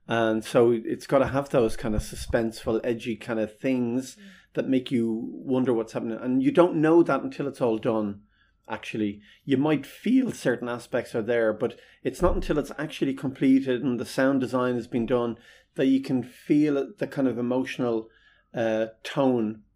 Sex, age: male, 30-49